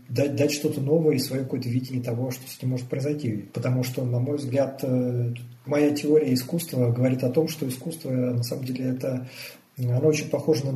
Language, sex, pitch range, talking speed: Russian, male, 125-150 Hz, 195 wpm